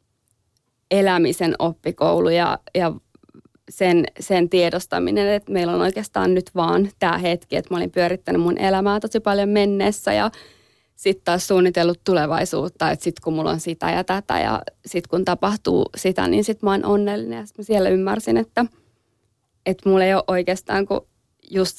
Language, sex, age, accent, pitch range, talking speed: Finnish, female, 20-39, native, 170-195 Hz, 165 wpm